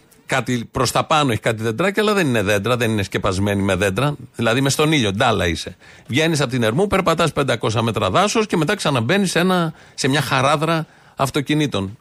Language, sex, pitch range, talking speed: Greek, male, 120-160 Hz, 185 wpm